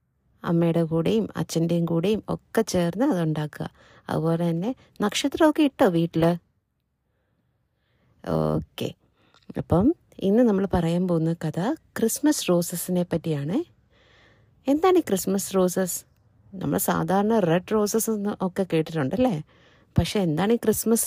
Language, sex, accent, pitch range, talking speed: Malayalam, female, native, 165-220 Hz, 95 wpm